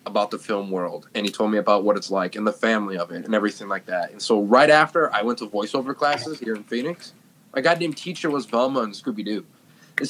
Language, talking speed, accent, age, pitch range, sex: English, 245 wpm, American, 20-39, 110-160 Hz, male